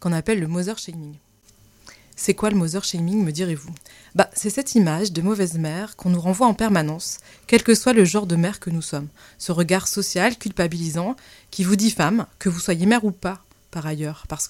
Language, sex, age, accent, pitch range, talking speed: French, female, 20-39, French, 155-210 Hz, 210 wpm